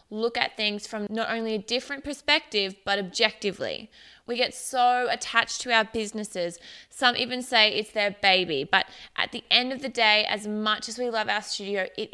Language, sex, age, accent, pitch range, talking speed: English, female, 20-39, Australian, 200-235 Hz, 195 wpm